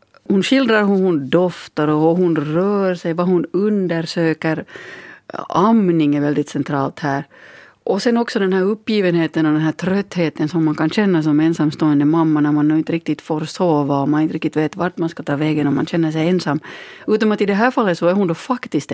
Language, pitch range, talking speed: Finnish, 160-205 Hz, 210 wpm